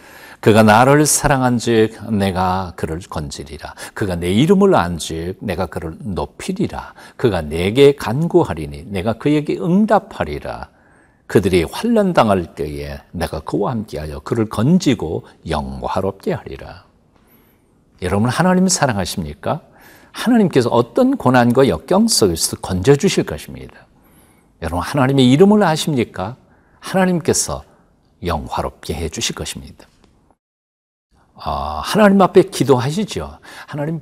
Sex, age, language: male, 60-79, Korean